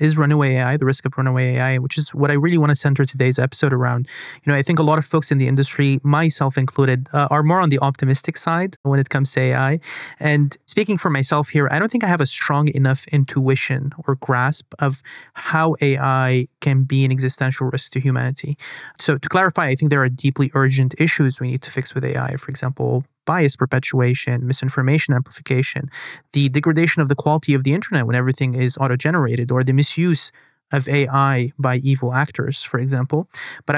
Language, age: English, 30-49